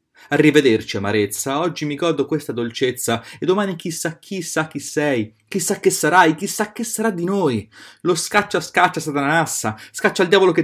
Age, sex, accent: 30-49, male, native